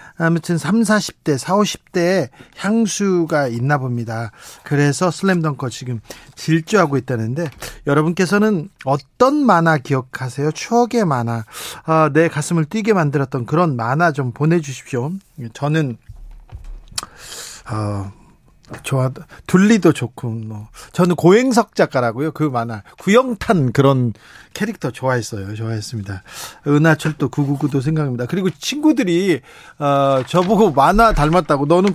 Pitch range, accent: 135-185 Hz, native